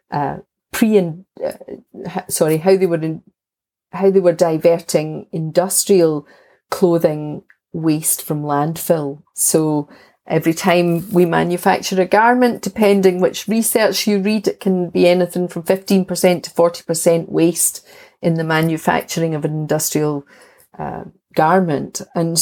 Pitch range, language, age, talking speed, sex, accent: 160-190 Hz, English, 40-59, 130 wpm, female, British